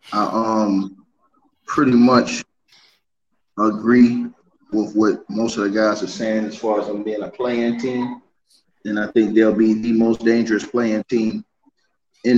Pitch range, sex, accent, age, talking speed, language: 105-120 Hz, male, American, 20-39, 155 wpm, English